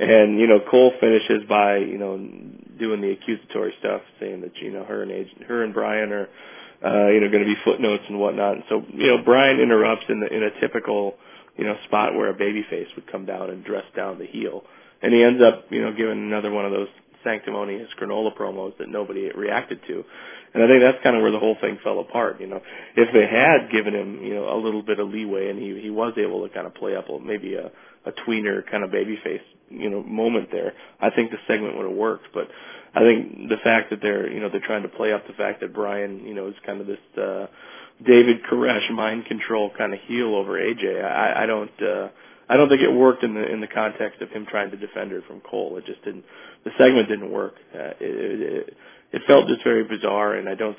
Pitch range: 105-120 Hz